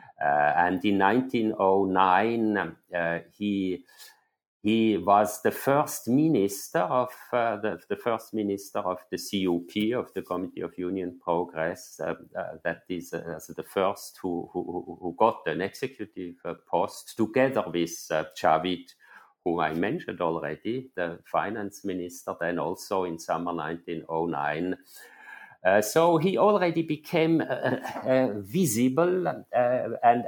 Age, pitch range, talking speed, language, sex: 50-69, 90-125 Hz, 135 wpm, English, male